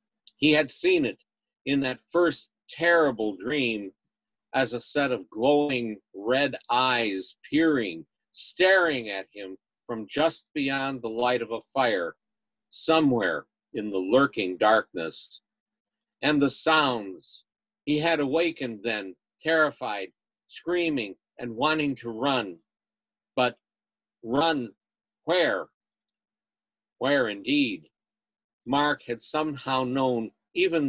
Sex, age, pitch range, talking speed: male, 50-69, 115-165 Hz, 110 wpm